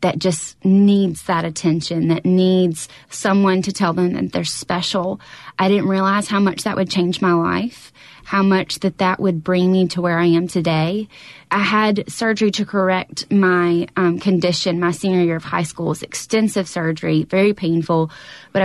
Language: English